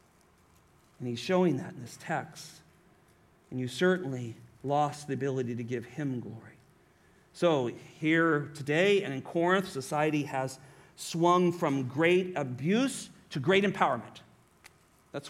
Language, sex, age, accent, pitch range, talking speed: English, male, 50-69, American, 145-205 Hz, 130 wpm